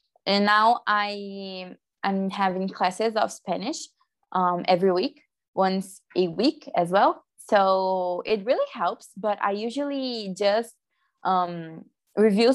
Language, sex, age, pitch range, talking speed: English, female, 20-39, 185-215 Hz, 125 wpm